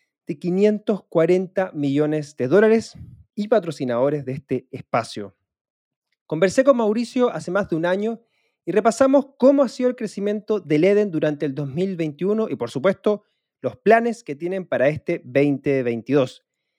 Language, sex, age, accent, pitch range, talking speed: Spanish, male, 30-49, Argentinian, 145-205 Hz, 140 wpm